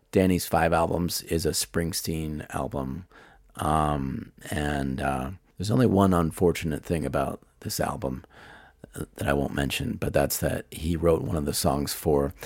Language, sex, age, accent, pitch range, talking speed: English, male, 30-49, American, 75-85 Hz, 155 wpm